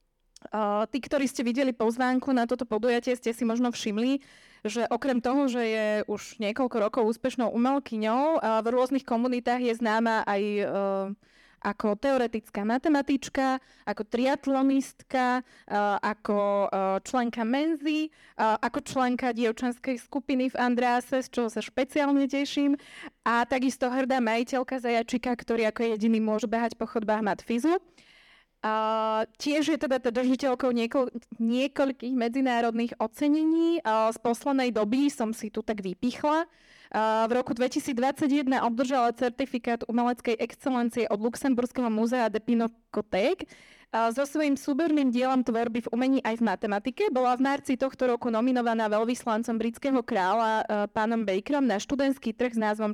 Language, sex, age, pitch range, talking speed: Slovak, female, 20-39, 220-265 Hz, 140 wpm